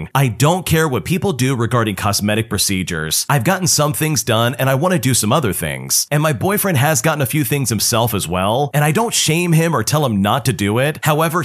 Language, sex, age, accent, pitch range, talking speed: English, male, 30-49, American, 110-155 Hz, 240 wpm